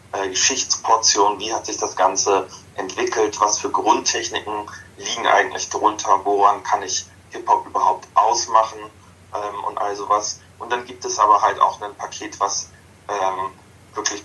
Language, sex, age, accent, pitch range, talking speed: German, male, 30-49, German, 95-100 Hz, 145 wpm